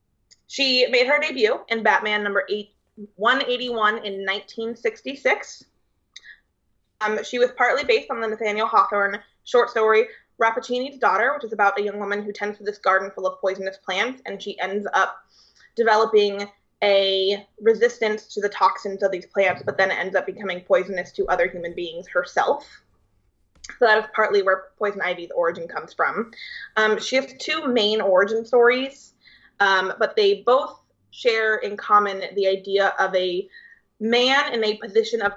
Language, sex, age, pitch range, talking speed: English, female, 20-39, 195-230 Hz, 160 wpm